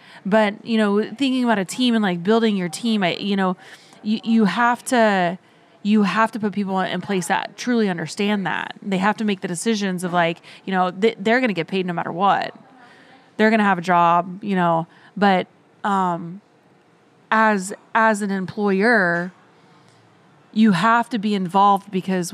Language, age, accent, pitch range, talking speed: English, 20-39, American, 175-210 Hz, 185 wpm